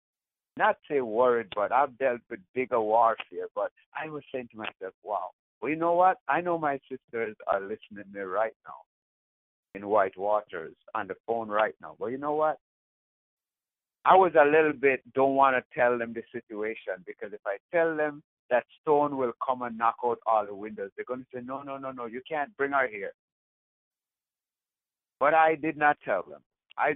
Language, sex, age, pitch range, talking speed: English, male, 60-79, 120-155 Hz, 200 wpm